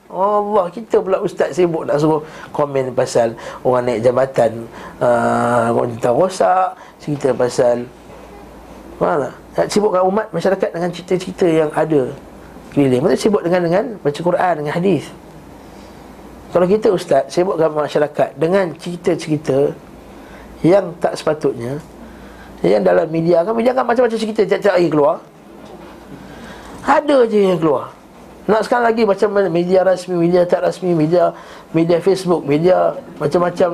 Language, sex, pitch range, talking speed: Malay, male, 150-190 Hz, 130 wpm